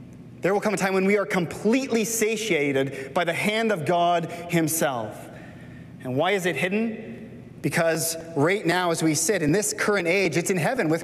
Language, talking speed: English, 190 wpm